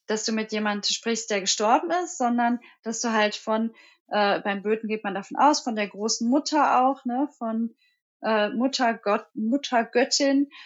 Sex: female